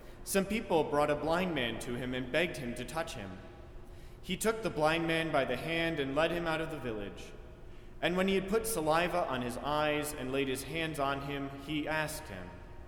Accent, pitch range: American, 125-170 Hz